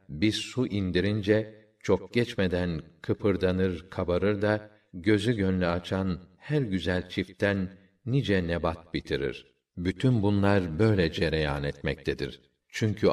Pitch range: 90-105 Hz